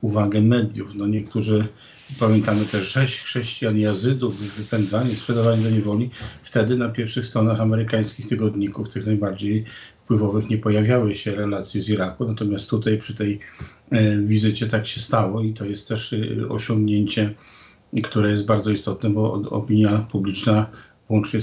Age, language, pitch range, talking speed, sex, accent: 50-69, Polish, 105-115 Hz, 135 wpm, male, native